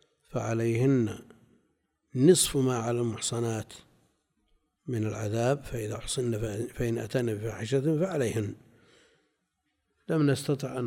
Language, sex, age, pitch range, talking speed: Arabic, male, 60-79, 115-150 Hz, 90 wpm